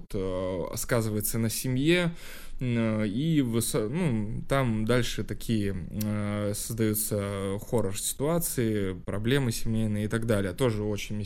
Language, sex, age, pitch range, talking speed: Russian, male, 20-39, 105-120 Hz, 90 wpm